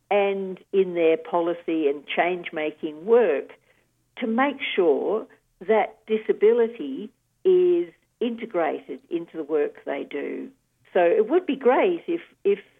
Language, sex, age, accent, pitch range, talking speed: English, female, 50-69, Australian, 155-250 Hz, 120 wpm